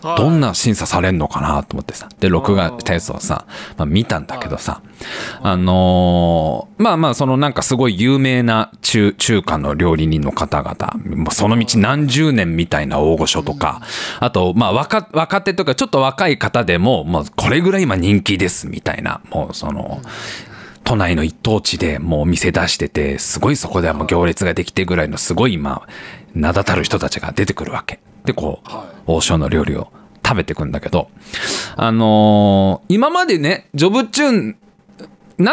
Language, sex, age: Japanese, male, 40-59